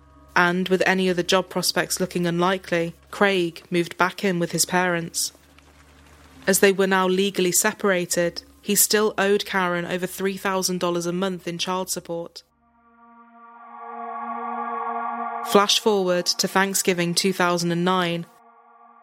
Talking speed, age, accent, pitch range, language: 115 wpm, 20-39, British, 175-200 Hz, English